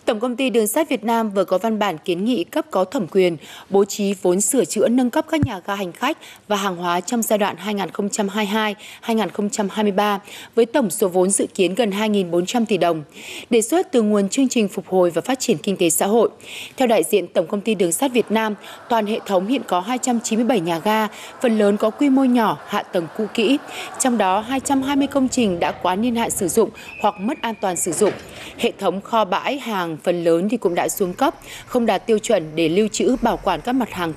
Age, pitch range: 20-39, 190-245 Hz